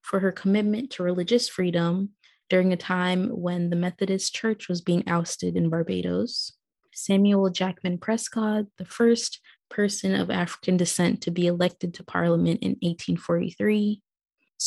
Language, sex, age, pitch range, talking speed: English, female, 20-39, 175-205 Hz, 140 wpm